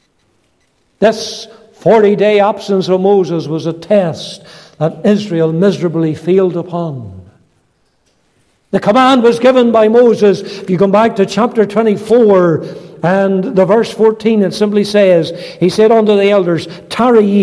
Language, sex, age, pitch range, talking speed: English, male, 60-79, 165-215 Hz, 140 wpm